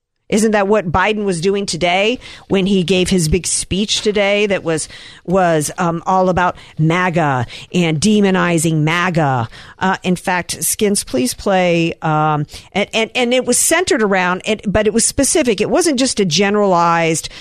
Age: 50-69